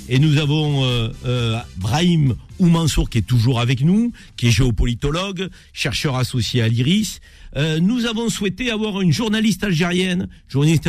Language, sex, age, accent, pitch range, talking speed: French, male, 50-69, French, 125-180 Hz, 155 wpm